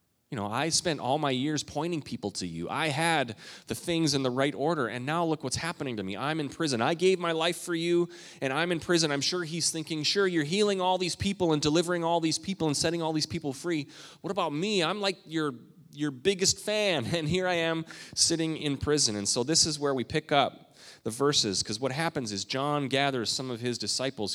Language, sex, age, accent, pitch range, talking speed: English, male, 30-49, American, 105-160 Hz, 235 wpm